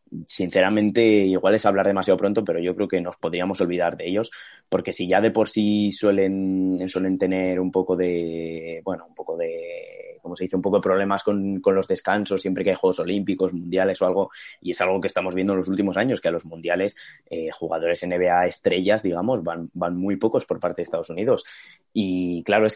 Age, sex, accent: 20-39, male, Spanish